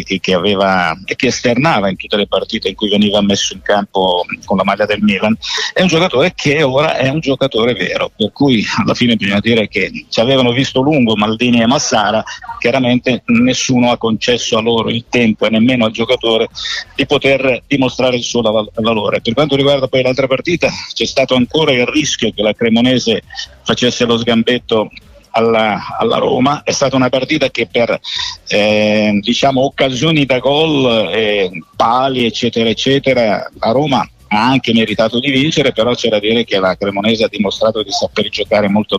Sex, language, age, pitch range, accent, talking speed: male, Italian, 50-69, 110-135 Hz, native, 175 wpm